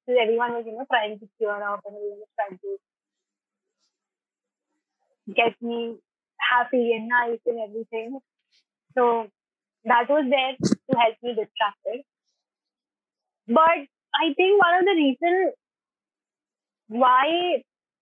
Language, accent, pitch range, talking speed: Hindi, native, 235-315 Hz, 120 wpm